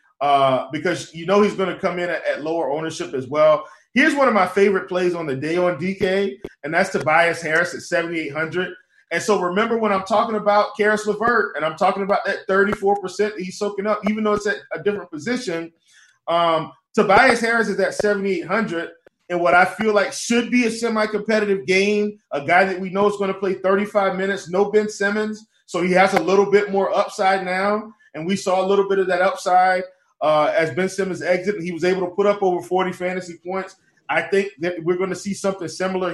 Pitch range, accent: 175-205 Hz, American